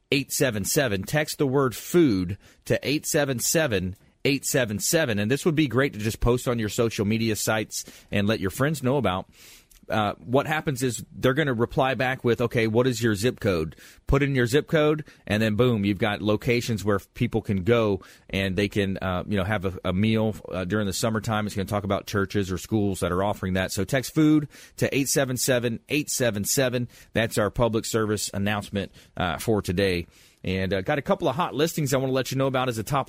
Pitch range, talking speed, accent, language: 105-135 Hz, 220 wpm, American, English